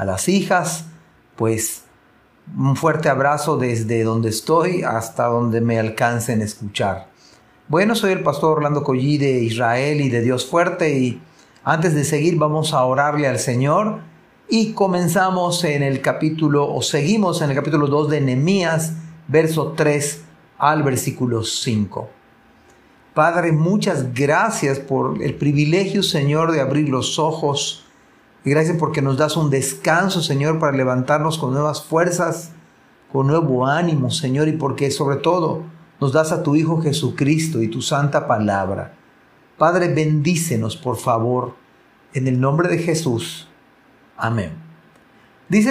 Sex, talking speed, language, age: male, 140 wpm, Spanish, 40-59